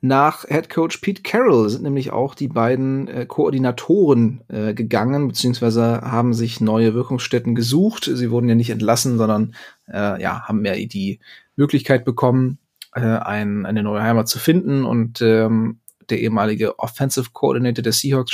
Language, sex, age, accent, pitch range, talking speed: German, male, 30-49, German, 110-130 Hz, 155 wpm